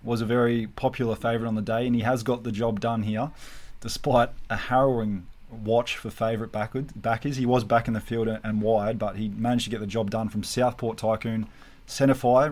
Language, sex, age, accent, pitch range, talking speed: English, male, 20-39, Australian, 110-125 Hz, 205 wpm